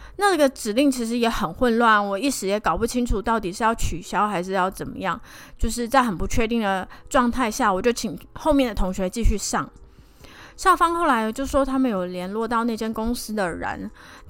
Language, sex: Chinese, female